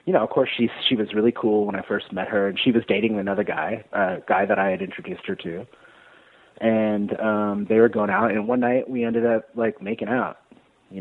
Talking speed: 245 wpm